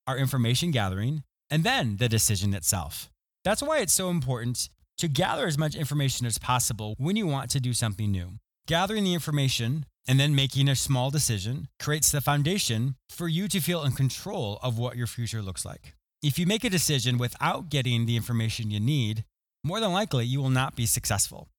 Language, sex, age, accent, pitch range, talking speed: English, male, 30-49, American, 110-150 Hz, 195 wpm